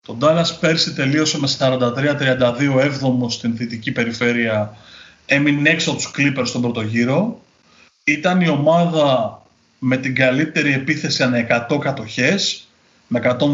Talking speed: 120 wpm